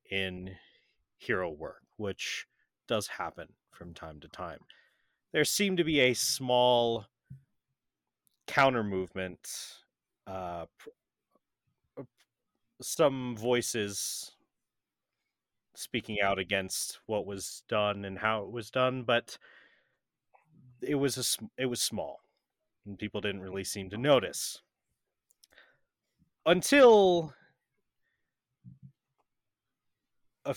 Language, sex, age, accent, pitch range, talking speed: English, male, 30-49, American, 100-130 Hz, 95 wpm